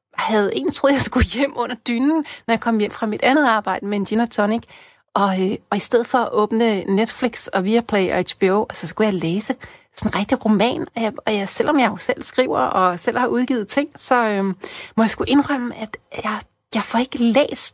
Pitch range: 190-245 Hz